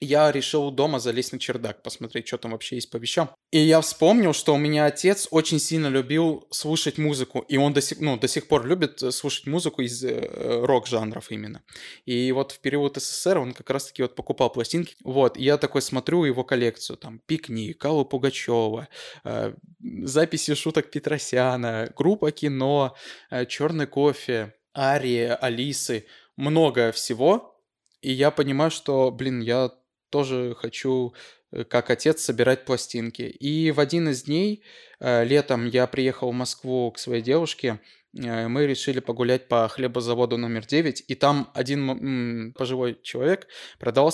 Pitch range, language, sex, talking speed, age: 120-150 Hz, Russian, male, 150 wpm, 20-39